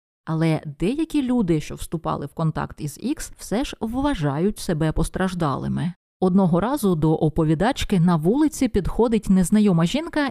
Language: Ukrainian